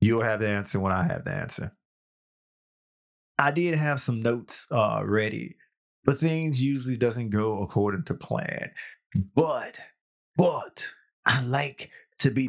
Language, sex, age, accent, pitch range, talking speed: English, male, 30-49, American, 105-135 Hz, 145 wpm